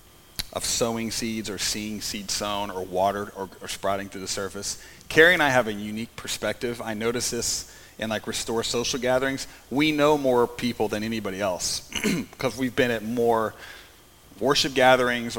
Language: English